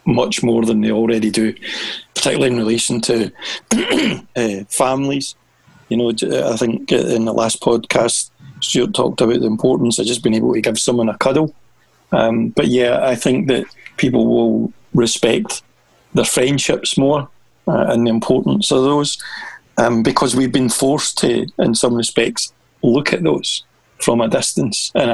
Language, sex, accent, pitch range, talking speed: English, male, British, 115-125 Hz, 160 wpm